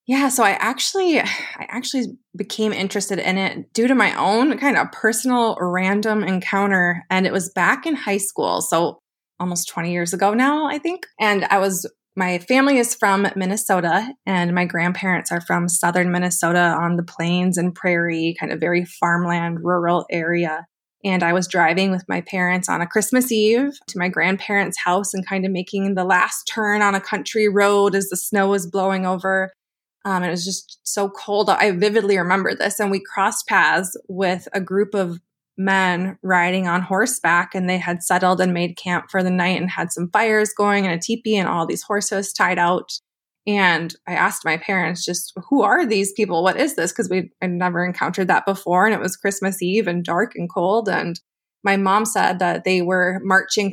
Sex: female